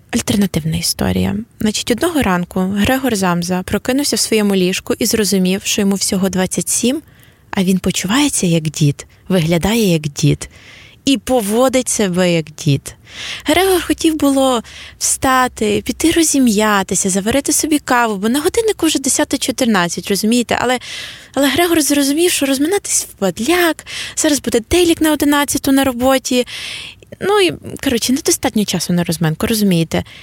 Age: 20-39